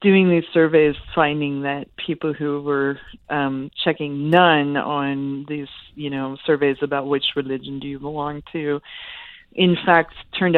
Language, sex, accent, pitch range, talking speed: English, female, American, 135-155 Hz, 145 wpm